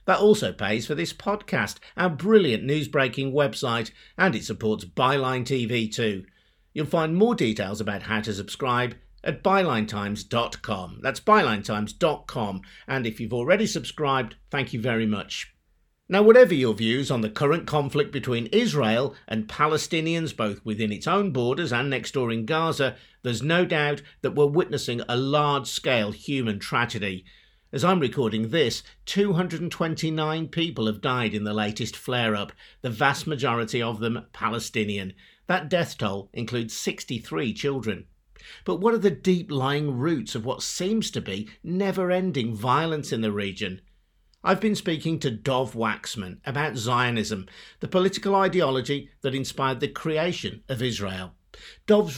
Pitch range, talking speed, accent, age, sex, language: 110-155 Hz, 145 wpm, British, 50-69, male, English